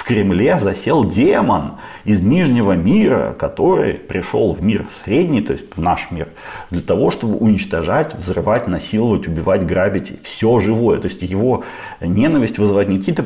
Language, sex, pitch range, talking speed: Ukrainian, male, 95-125 Hz, 155 wpm